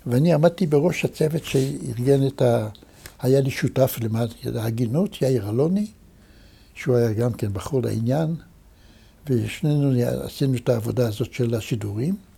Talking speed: 130 wpm